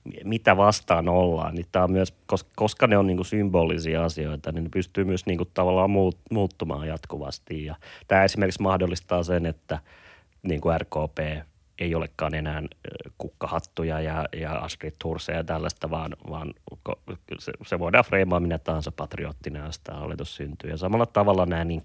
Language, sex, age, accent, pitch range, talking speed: Finnish, male, 30-49, native, 80-95 Hz, 150 wpm